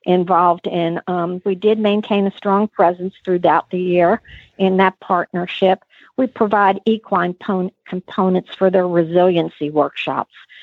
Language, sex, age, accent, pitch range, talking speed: English, female, 50-69, American, 175-200 Hz, 130 wpm